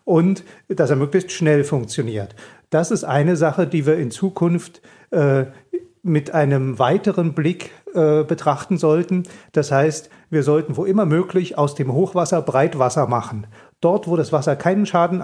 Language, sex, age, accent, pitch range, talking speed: German, male, 40-59, German, 140-175 Hz, 160 wpm